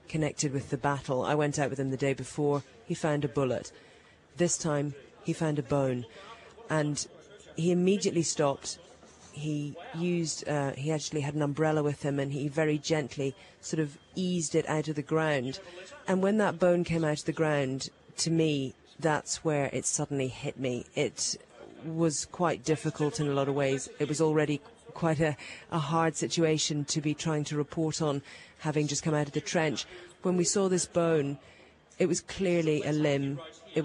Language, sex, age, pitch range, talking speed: English, female, 40-59, 140-160 Hz, 190 wpm